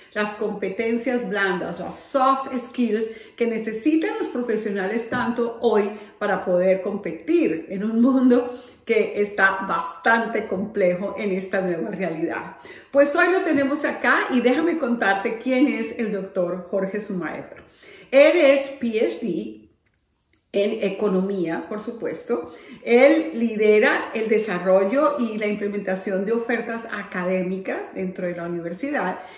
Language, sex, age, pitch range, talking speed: Spanish, female, 40-59, 195-260 Hz, 125 wpm